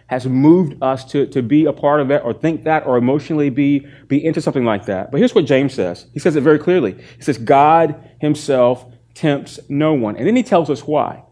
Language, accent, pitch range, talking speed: English, American, 120-155 Hz, 235 wpm